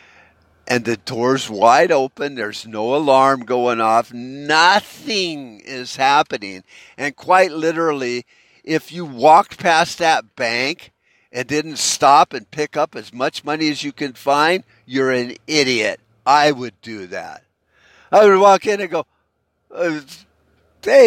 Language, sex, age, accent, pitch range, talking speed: English, male, 50-69, American, 125-170 Hz, 140 wpm